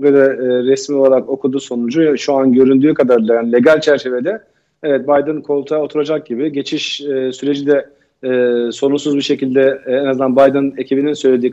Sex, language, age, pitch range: male, Turkish, 40-59, 125-145 Hz